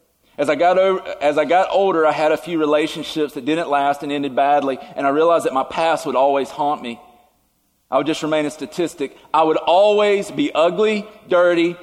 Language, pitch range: English, 150-175 Hz